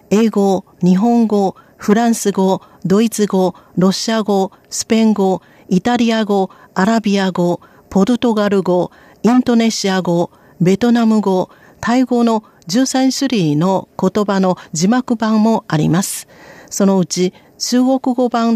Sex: female